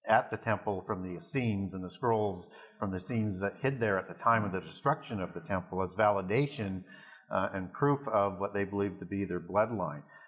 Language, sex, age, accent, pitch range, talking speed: English, male, 50-69, American, 100-120 Hz, 215 wpm